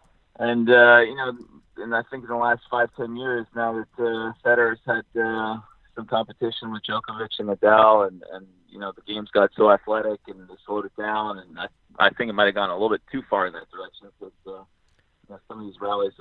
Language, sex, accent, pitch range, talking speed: English, male, American, 100-115 Hz, 235 wpm